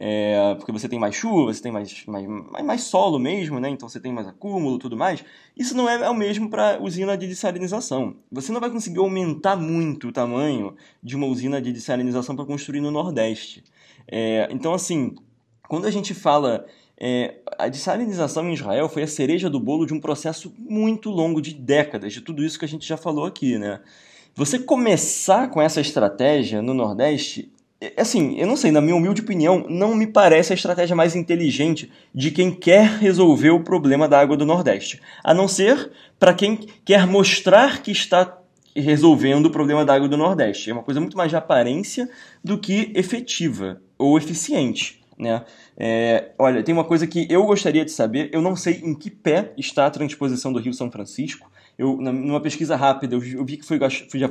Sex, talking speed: male, 190 wpm